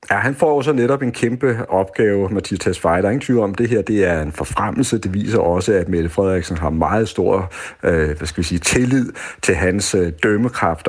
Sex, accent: male, native